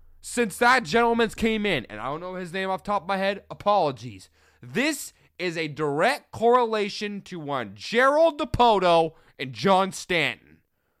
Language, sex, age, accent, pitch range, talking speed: English, male, 20-39, American, 130-220 Hz, 165 wpm